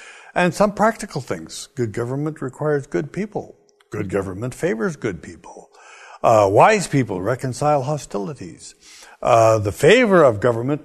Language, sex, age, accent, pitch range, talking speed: English, male, 60-79, American, 105-165 Hz, 135 wpm